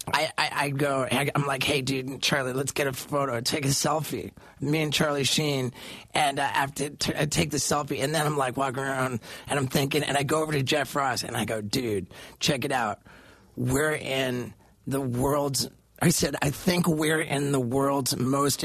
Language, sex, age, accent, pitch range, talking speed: English, male, 30-49, American, 135-180 Hz, 210 wpm